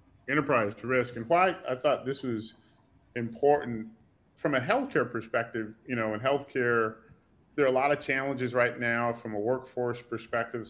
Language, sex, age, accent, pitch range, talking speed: English, male, 30-49, American, 105-125 Hz, 170 wpm